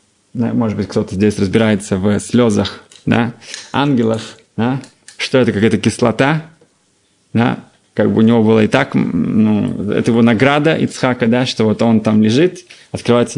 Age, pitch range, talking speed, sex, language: 20-39, 110-135 Hz, 150 wpm, male, Russian